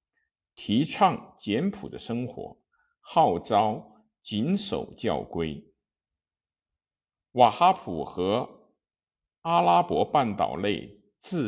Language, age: Chinese, 50-69